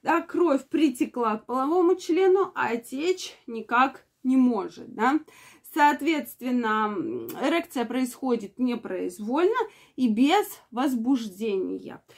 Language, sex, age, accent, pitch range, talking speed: Russian, female, 20-39, native, 220-265 Hz, 95 wpm